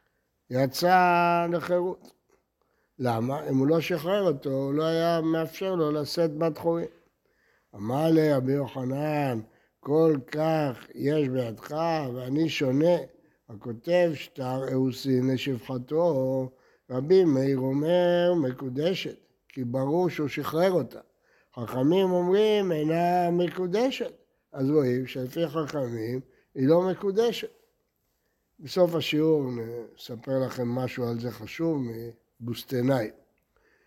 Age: 60-79